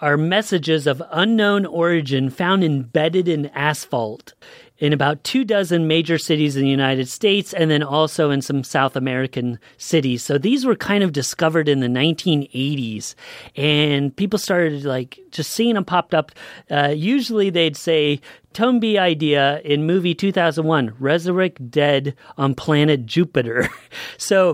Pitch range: 140-175 Hz